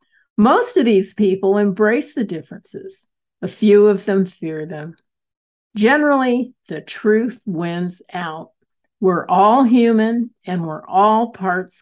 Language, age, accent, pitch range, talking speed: English, 50-69, American, 180-225 Hz, 125 wpm